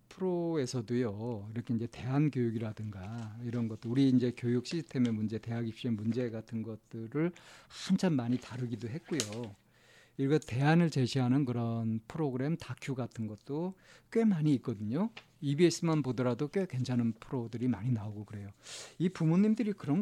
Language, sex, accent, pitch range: Korean, male, native, 110-145 Hz